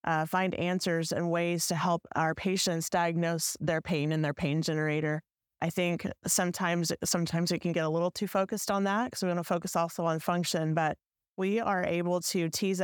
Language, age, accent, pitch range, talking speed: English, 20-39, American, 170-195 Hz, 200 wpm